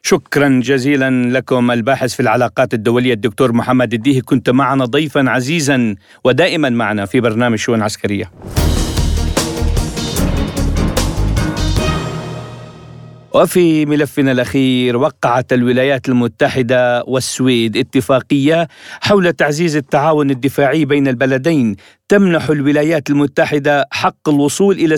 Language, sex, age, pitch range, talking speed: Arabic, male, 50-69, 130-165 Hz, 95 wpm